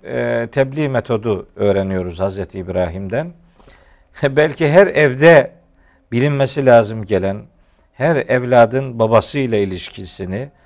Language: Turkish